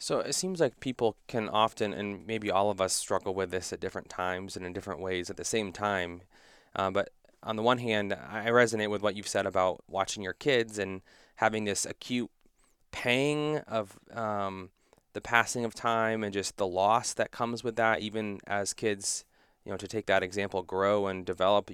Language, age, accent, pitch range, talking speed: English, 20-39, American, 95-110 Hz, 200 wpm